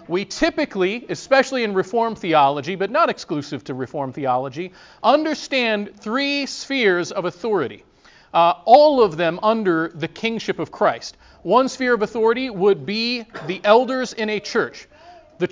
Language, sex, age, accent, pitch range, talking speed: English, male, 40-59, American, 180-245 Hz, 145 wpm